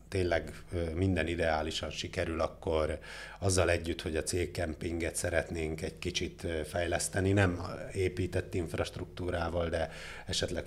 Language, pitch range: Hungarian, 80-95 Hz